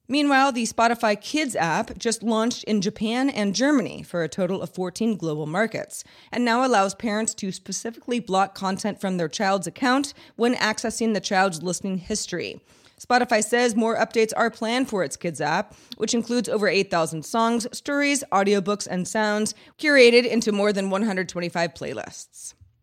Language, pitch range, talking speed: English, 190-240 Hz, 160 wpm